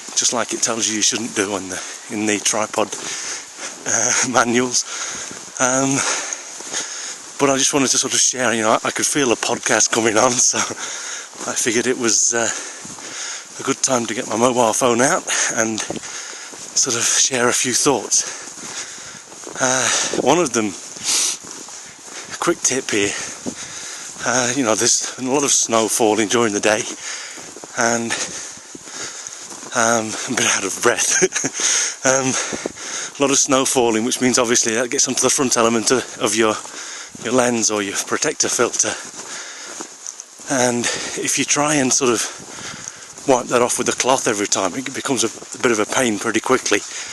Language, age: English, 30-49